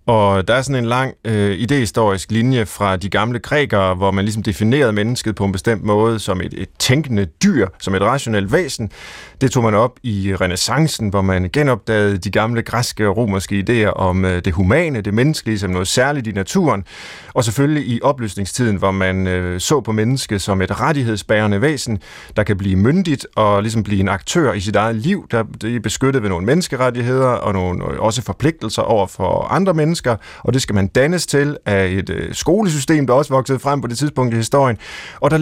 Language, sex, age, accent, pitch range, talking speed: Danish, male, 30-49, native, 105-130 Hz, 200 wpm